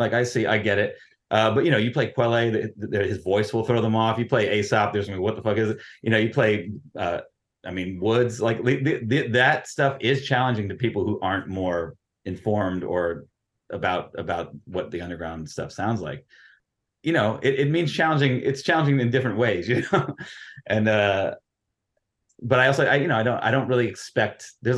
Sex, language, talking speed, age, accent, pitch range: male, English, 205 wpm, 30-49, American, 100-125 Hz